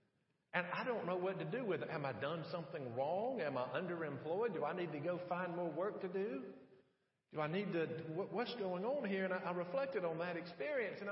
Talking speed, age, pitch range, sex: 235 wpm, 50-69, 160-220 Hz, male